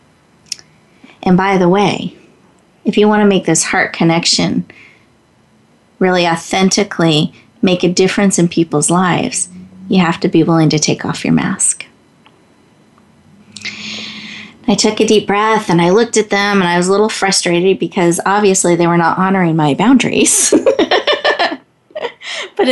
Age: 30-49